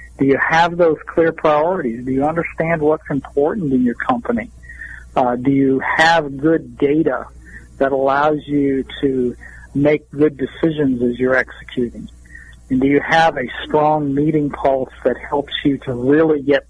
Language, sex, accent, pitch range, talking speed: English, male, American, 125-150 Hz, 160 wpm